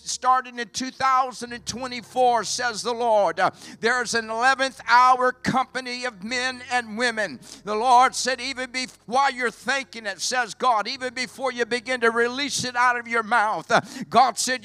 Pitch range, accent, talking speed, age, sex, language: 235-265 Hz, American, 155 wpm, 60-79, male, English